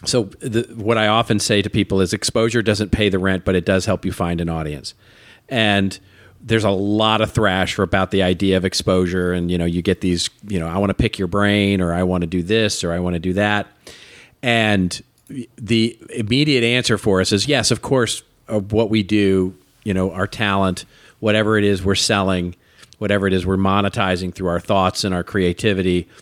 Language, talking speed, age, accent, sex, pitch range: English, 215 wpm, 40-59, American, male, 95-115 Hz